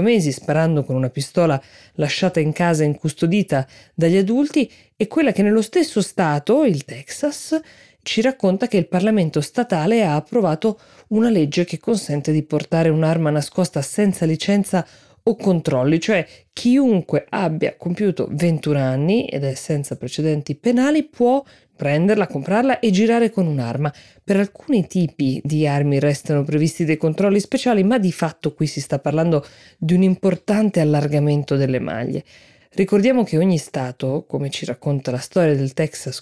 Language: Italian